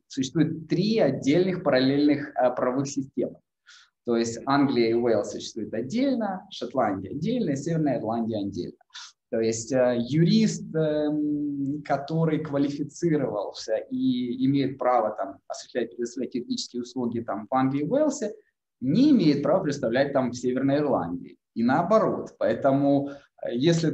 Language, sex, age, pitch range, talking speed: Ukrainian, male, 20-39, 125-160 Hz, 125 wpm